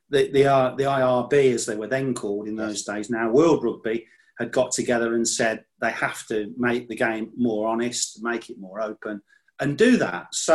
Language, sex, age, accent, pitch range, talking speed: English, male, 40-59, British, 130-180 Hz, 200 wpm